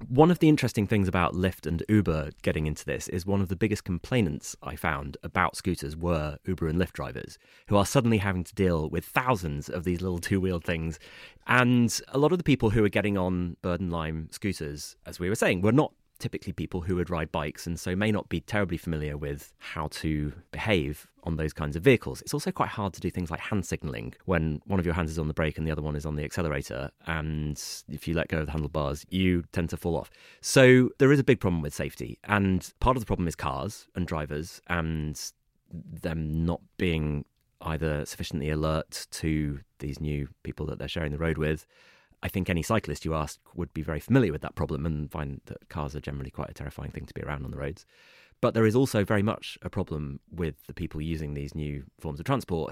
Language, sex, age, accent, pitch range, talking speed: English, male, 30-49, British, 75-95 Hz, 230 wpm